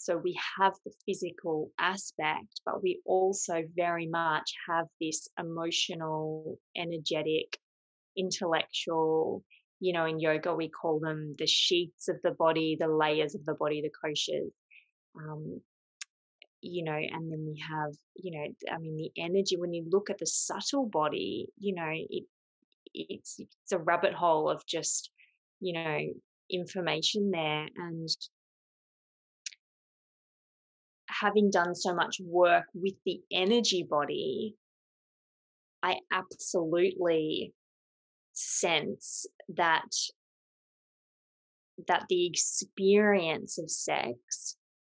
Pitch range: 160-195 Hz